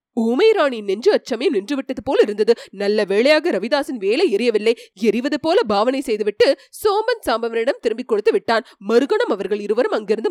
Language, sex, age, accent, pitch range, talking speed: Tamil, female, 30-49, native, 220-305 Hz, 150 wpm